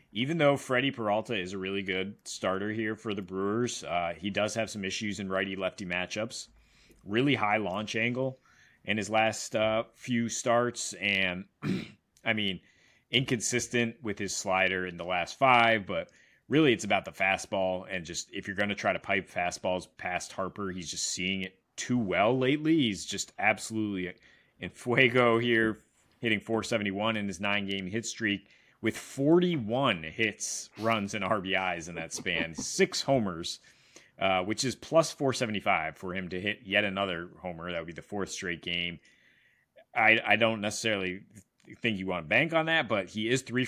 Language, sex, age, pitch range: English, male, 30-49, 95-115 Hz